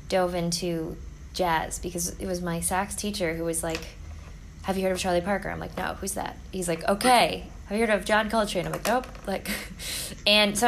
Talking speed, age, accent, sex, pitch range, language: 215 wpm, 20-39, American, female, 170-205 Hz, English